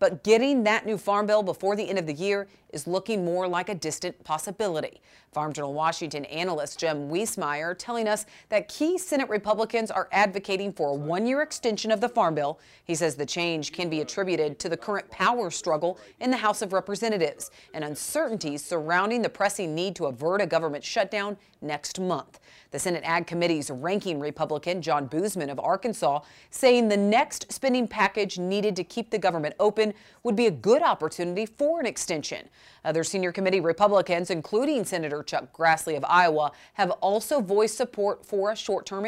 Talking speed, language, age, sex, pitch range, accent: 180 wpm, English, 40-59, female, 165-215 Hz, American